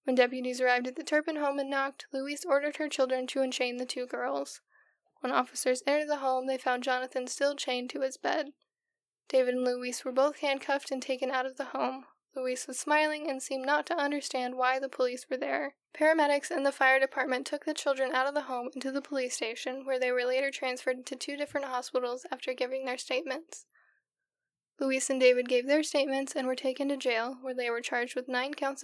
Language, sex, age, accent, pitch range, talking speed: English, female, 10-29, American, 255-280 Hz, 215 wpm